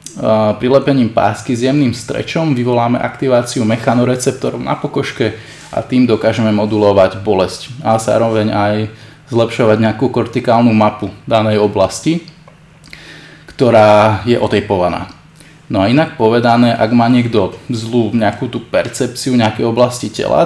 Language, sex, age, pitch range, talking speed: Slovak, male, 20-39, 105-125 Hz, 120 wpm